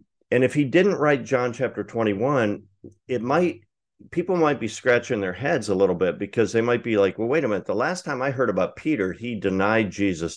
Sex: male